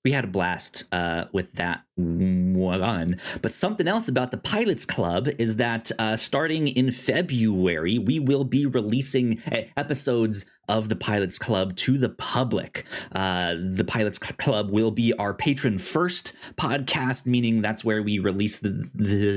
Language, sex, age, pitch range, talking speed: English, male, 20-39, 95-140 Hz, 155 wpm